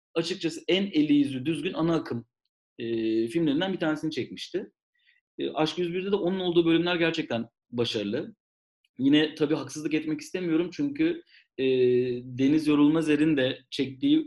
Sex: male